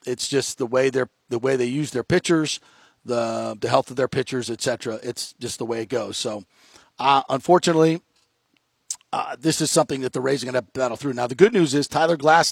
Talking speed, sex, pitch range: 225 wpm, male, 125-150 Hz